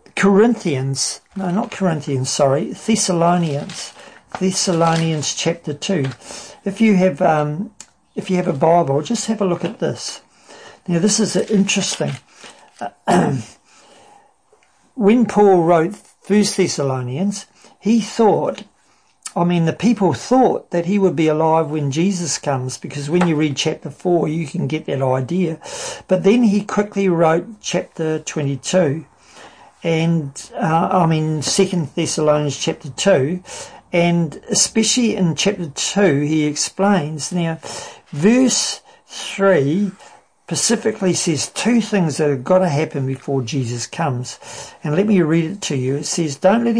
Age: 50-69